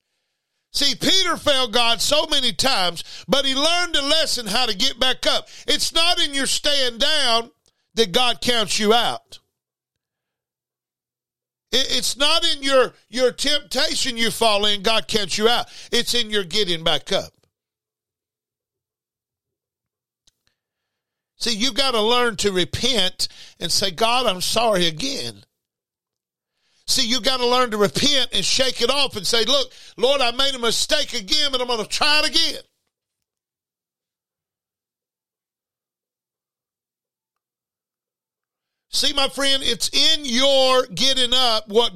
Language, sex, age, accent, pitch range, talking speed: English, male, 50-69, American, 220-275 Hz, 135 wpm